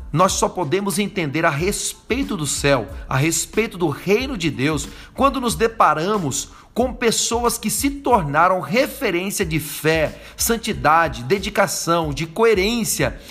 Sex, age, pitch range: male, 40-59, 155-235 Hz